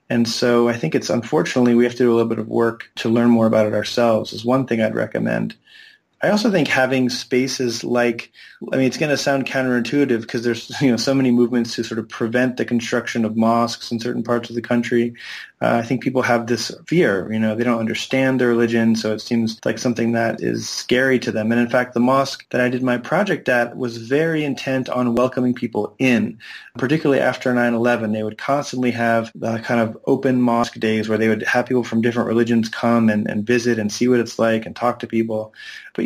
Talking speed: 235 wpm